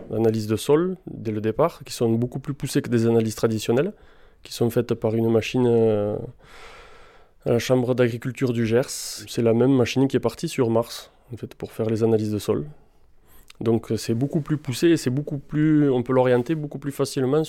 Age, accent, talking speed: 20-39, French, 195 wpm